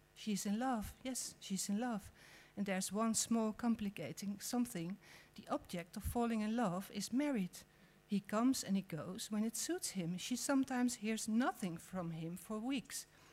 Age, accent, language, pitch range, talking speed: 50-69, Dutch, Dutch, 185-230 Hz, 170 wpm